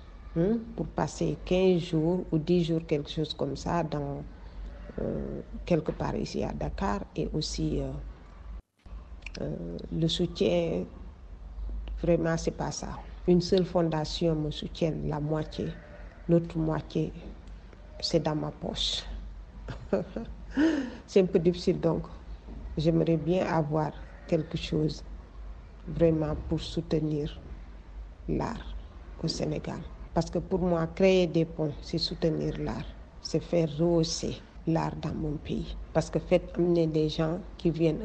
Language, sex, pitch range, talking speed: French, female, 150-170 Hz, 130 wpm